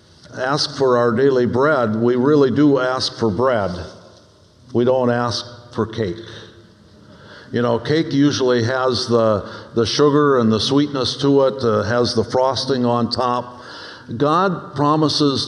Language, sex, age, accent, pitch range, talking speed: English, male, 60-79, American, 110-130 Hz, 145 wpm